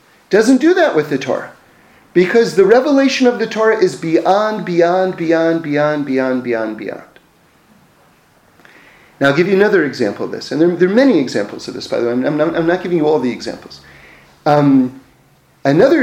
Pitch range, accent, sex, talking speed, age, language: 165-260 Hz, American, male, 190 wpm, 40-59, English